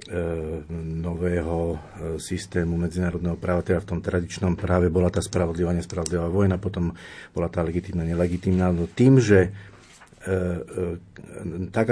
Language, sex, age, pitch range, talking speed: Slovak, male, 40-59, 90-95 Hz, 110 wpm